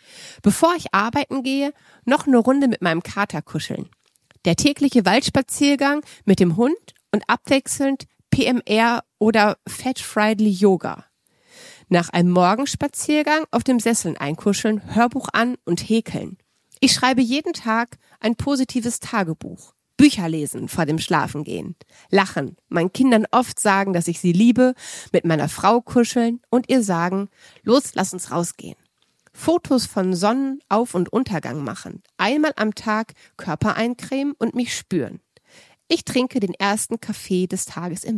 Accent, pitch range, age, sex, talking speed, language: German, 185-260 Hz, 30-49, female, 140 wpm, German